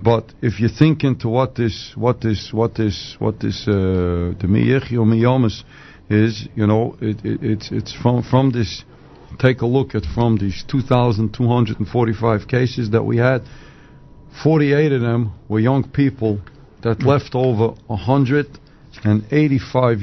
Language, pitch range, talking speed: English, 105-130 Hz, 135 wpm